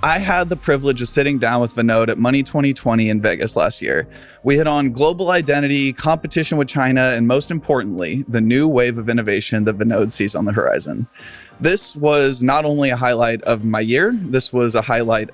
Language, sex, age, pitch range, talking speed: English, male, 20-39, 115-150 Hz, 200 wpm